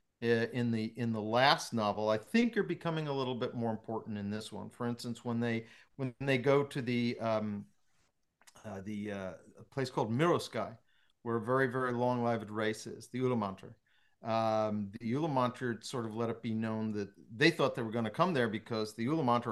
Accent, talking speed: American, 205 wpm